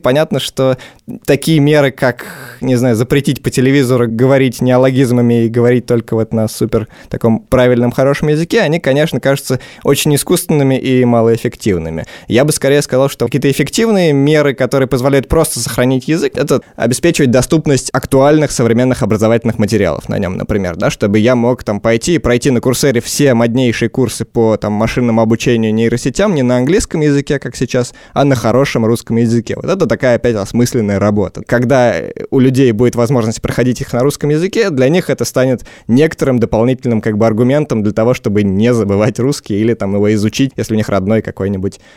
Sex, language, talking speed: male, Russian, 175 wpm